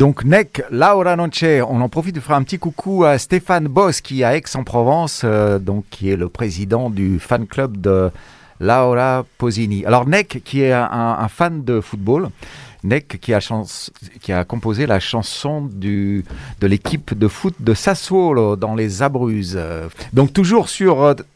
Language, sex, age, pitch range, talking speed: French, male, 40-59, 100-145 Hz, 165 wpm